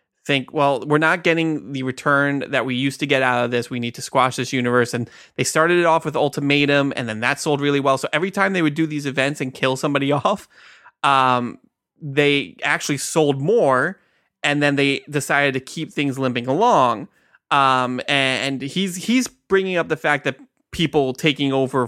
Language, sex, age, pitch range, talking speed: English, male, 20-39, 130-150 Hz, 195 wpm